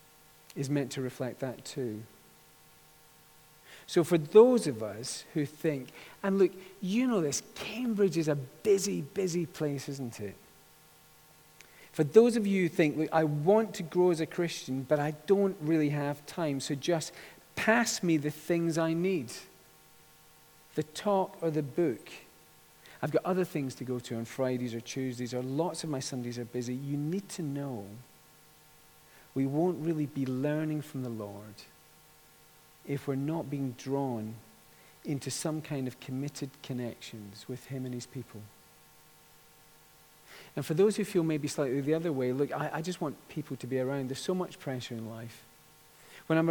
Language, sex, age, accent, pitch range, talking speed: English, male, 40-59, British, 130-160 Hz, 170 wpm